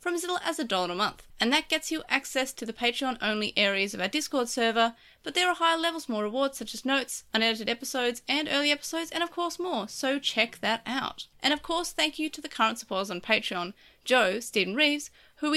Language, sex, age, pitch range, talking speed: English, female, 30-49, 225-305 Hz, 225 wpm